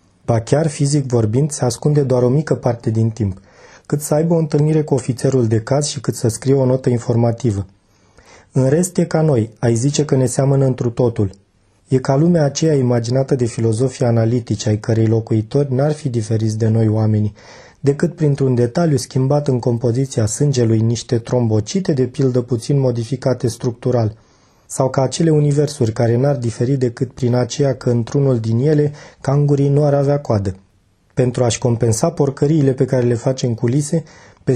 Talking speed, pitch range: 175 wpm, 120-145 Hz